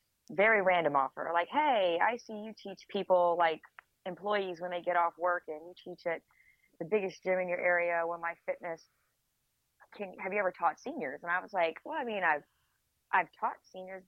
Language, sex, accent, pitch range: English, female, American, 155-195 Hz